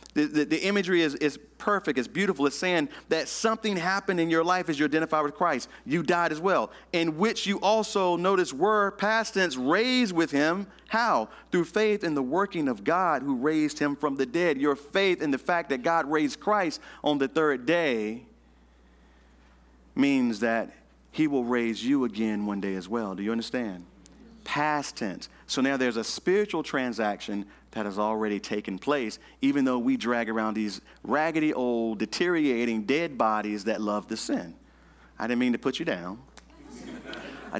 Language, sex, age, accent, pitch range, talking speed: English, male, 40-59, American, 105-165 Hz, 185 wpm